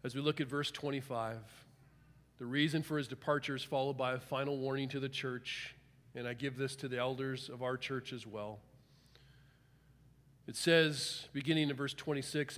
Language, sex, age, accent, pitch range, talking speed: English, male, 40-59, American, 135-180 Hz, 180 wpm